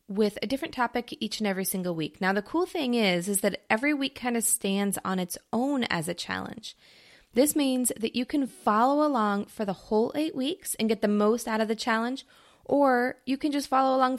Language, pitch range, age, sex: English, 205-260 Hz, 20-39, female